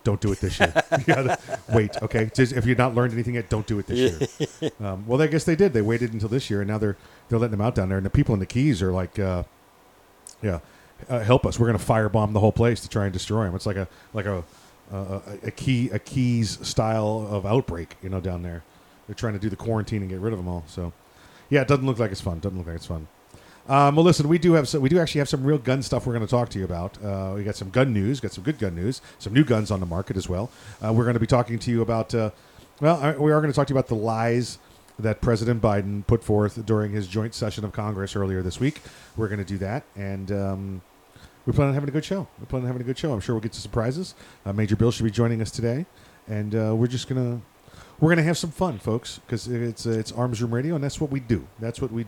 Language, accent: English, American